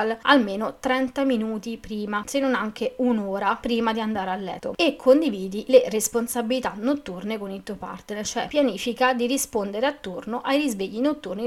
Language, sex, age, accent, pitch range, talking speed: Italian, female, 30-49, native, 210-255 Hz, 155 wpm